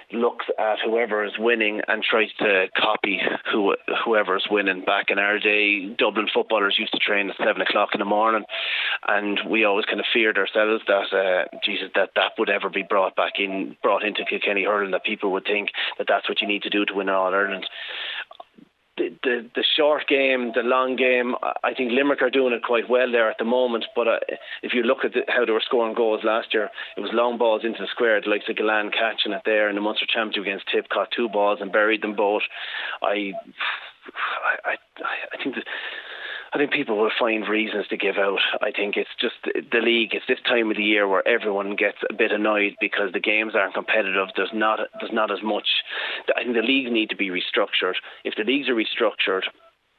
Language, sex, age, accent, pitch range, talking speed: English, male, 30-49, Irish, 100-120 Hz, 215 wpm